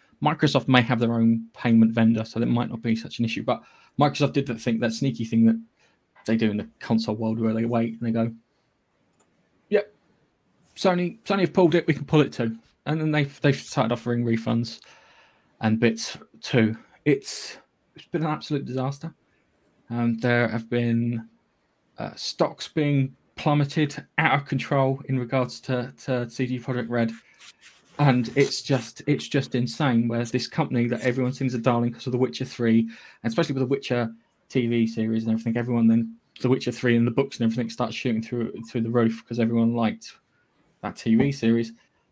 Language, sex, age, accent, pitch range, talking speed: English, male, 20-39, British, 115-140 Hz, 190 wpm